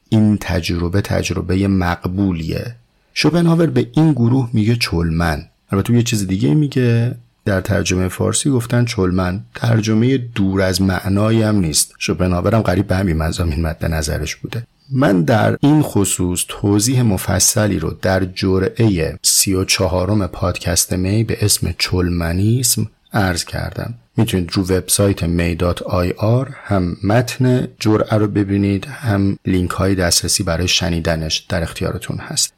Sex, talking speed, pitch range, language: male, 125 wpm, 90-115 Hz, Persian